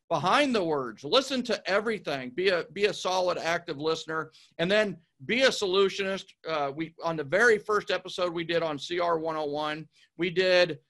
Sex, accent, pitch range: male, American, 155-205 Hz